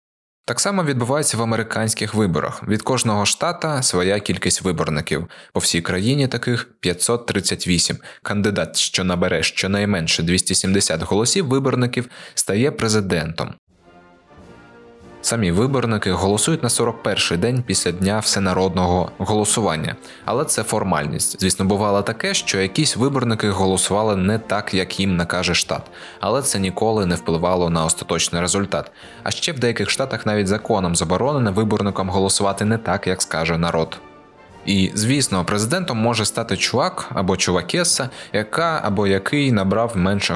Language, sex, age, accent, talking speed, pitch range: Ukrainian, male, 20-39, native, 130 wpm, 90-115 Hz